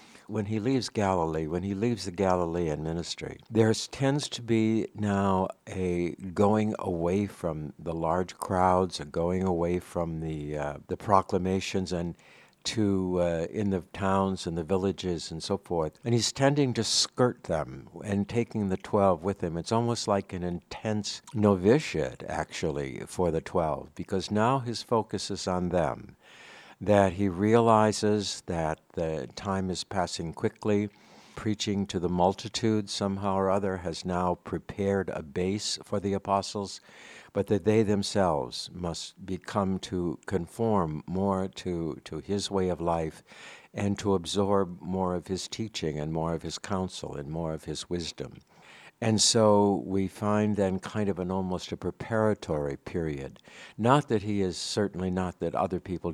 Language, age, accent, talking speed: English, 60-79, American, 160 wpm